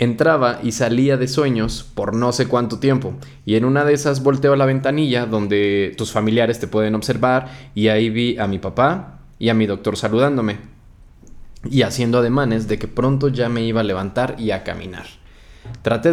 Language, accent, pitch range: Spanish, Mexican, 105-130 Hz